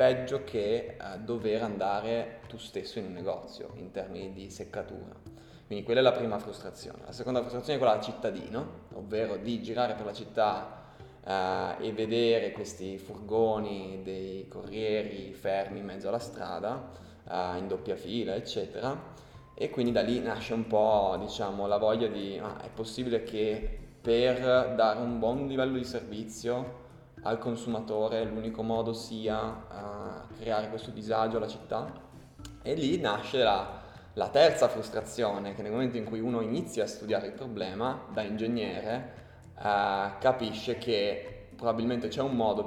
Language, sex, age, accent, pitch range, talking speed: Italian, male, 20-39, native, 100-120 Hz, 155 wpm